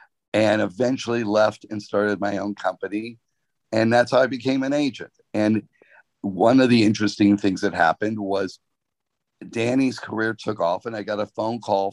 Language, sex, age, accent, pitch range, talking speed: English, male, 50-69, American, 105-120 Hz, 170 wpm